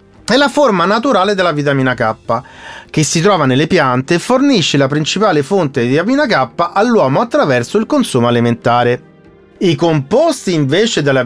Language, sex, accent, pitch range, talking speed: Italian, male, native, 135-210 Hz, 155 wpm